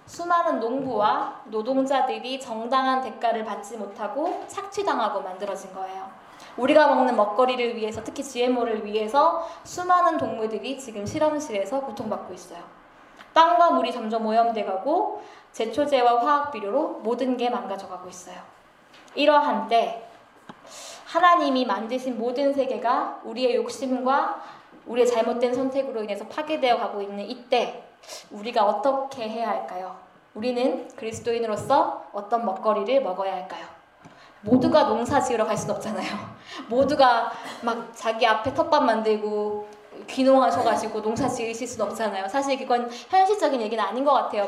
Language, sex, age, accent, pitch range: Korean, female, 20-39, native, 215-275 Hz